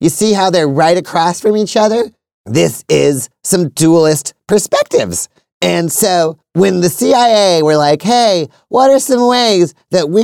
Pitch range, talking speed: 135-190 Hz, 165 wpm